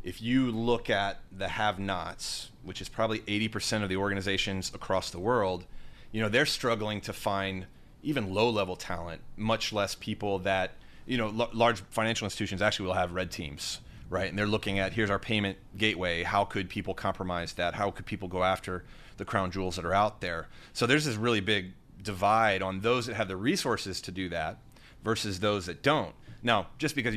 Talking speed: 195 wpm